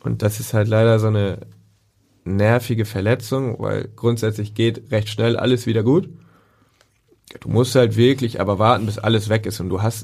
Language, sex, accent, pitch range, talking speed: German, male, German, 105-115 Hz, 180 wpm